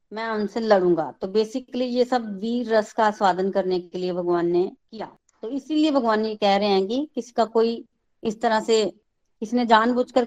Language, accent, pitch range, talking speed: Hindi, native, 195-230 Hz, 185 wpm